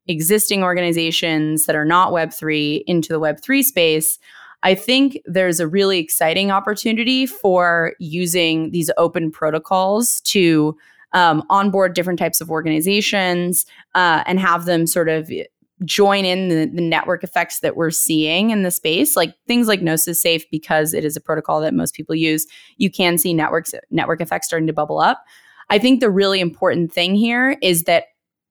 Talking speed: 165 wpm